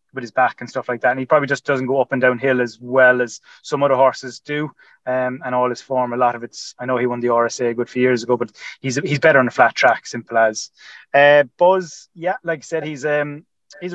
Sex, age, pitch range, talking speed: male, 20-39, 125-150 Hz, 265 wpm